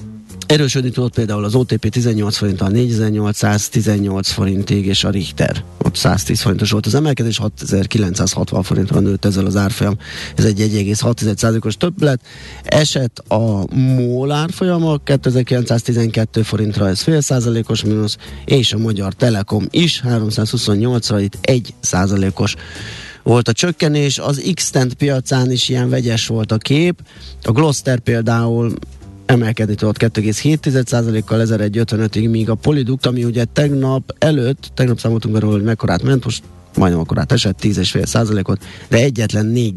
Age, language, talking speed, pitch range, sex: 30-49, Hungarian, 135 wpm, 105-125 Hz, male